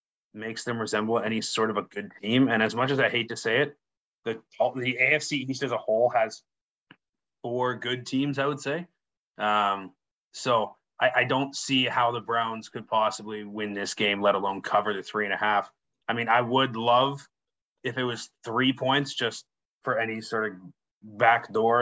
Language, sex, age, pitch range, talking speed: English, male, 30-49, 105-125 Hz, 195 wpm